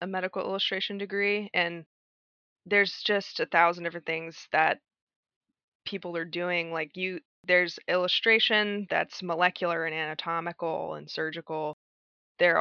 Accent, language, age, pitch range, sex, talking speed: American, English, 20-39, 165-185 Hz, female, 125 wpm